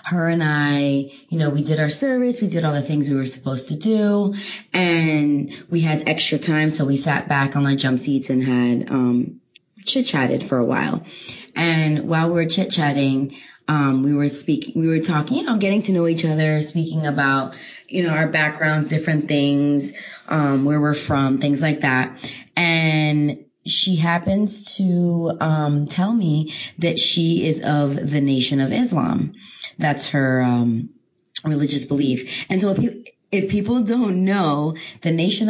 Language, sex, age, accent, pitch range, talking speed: English, female, 20-39, American, 145-175 Hz, 175 wpm